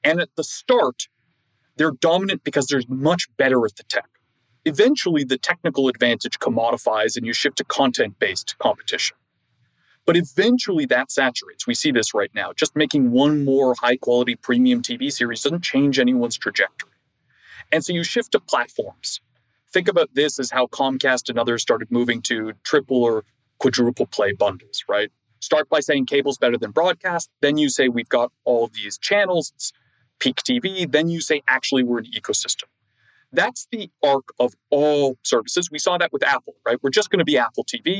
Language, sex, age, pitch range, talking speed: English, male, 30-49, 120-185 Hz, 175 wpm